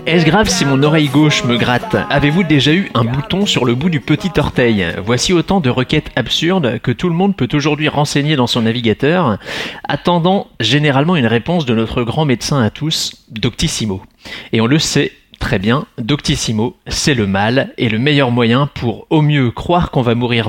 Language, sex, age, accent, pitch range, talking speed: French, male, 30-49, French, 120-155 Hz, 195 wpm